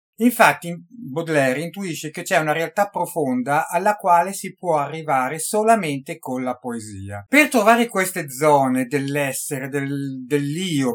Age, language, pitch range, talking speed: 50-69, Italian, 145-200 Hz, 130 wpm